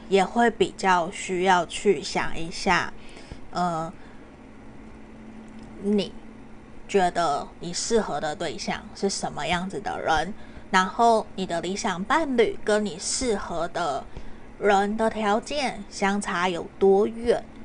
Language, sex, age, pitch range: Chinese, female, 20-39, 185-225 Hz